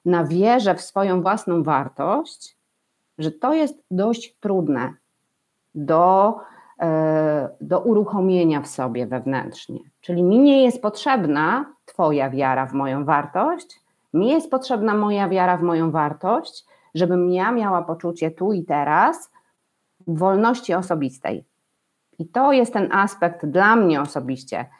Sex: female